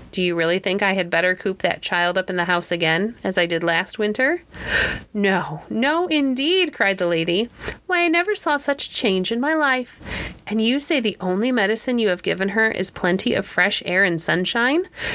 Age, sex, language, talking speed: 30-49, female, English, 210 wpm